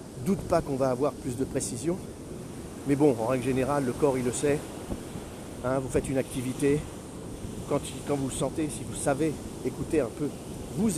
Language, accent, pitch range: French, French, 120-145 Hz